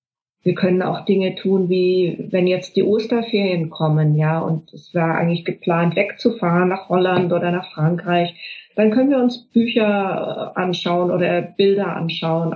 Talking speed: 155 wpm